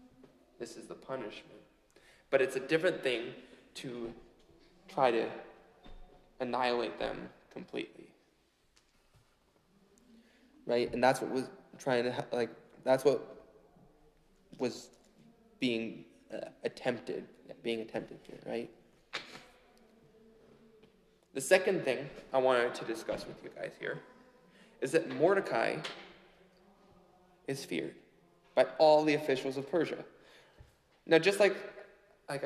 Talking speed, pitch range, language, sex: 110 wpm, 125-160 Hz, English, male